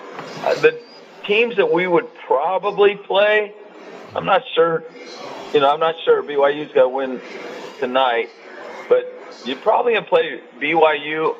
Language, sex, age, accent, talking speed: English, male, 40-59, American, 145 wpm